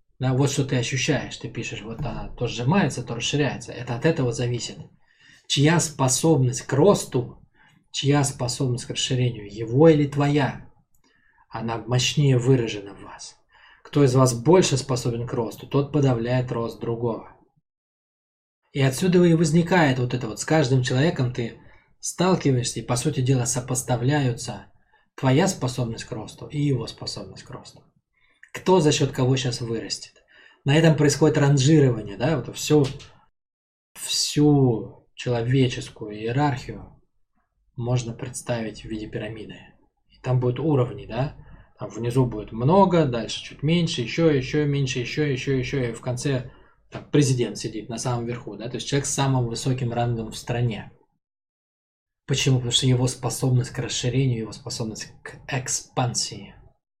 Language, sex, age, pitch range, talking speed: Russian, male, 20-39, 115-145 Hz, 145 wpm